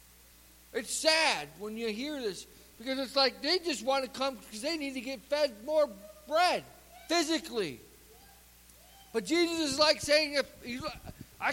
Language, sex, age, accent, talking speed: English, male, 50-69, American, 150 wpm